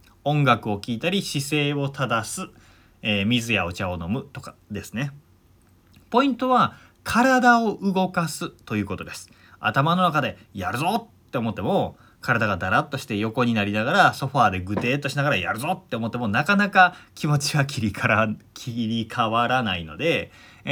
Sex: male